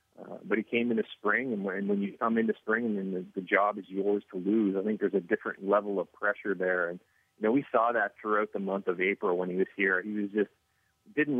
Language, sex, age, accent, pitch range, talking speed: English, male, 30-49, American, 100-120 Hz, 270 wpm